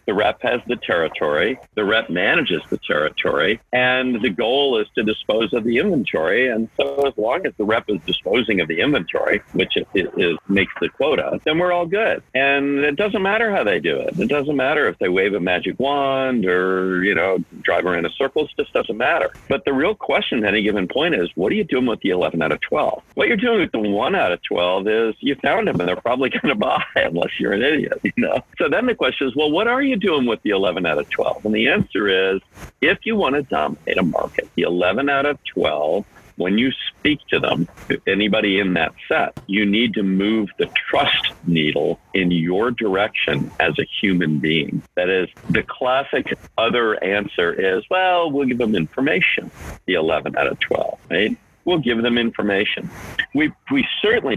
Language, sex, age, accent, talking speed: English, male, 50-69, American, 215 wpm